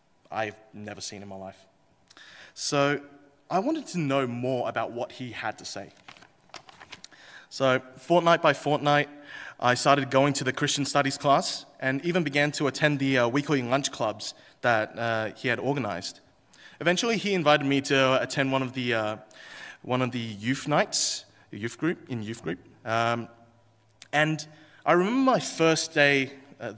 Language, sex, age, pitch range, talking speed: English, male, 20-39, 115-145 Hz, 165 wpm